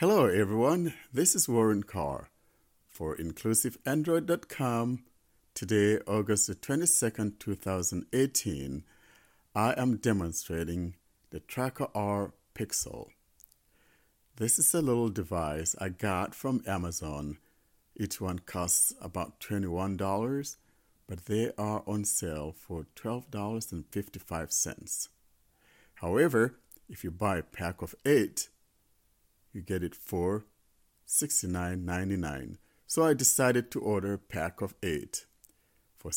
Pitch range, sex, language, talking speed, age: 85-110 Hz, male, English, 110 wpm, 60-79